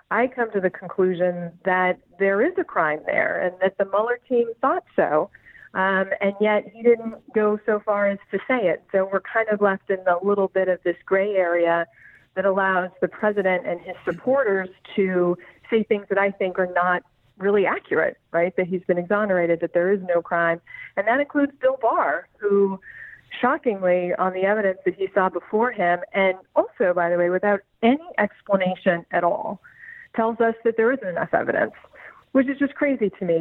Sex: female